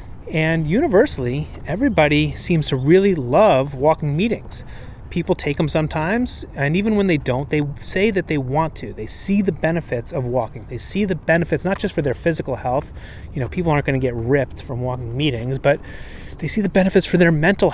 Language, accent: English, American